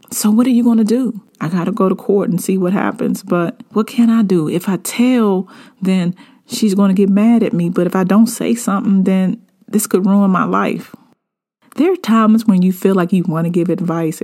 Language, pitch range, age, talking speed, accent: English, 170-230 Hz, 40-59, 240 wpm, American